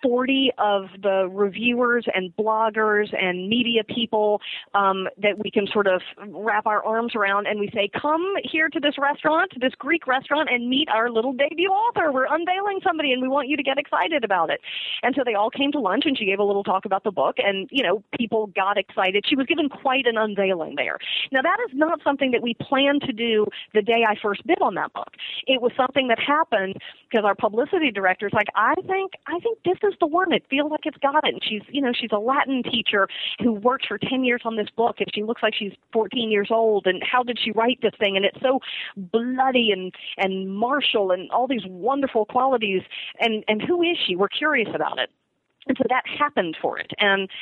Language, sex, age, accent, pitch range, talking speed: English, female, 40-59, American, 205-270 Hz, 225 wpm